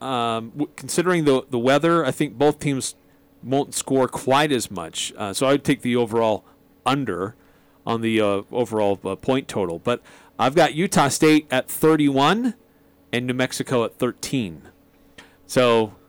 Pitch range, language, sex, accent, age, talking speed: 110-145 Hz, English, male, American, 40-59, 155 wpm